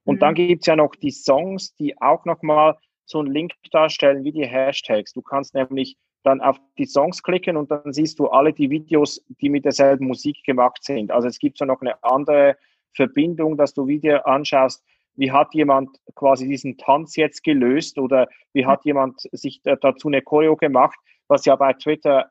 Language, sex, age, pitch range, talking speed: German, male, 30-49, 135-155 Hz, 195 wpm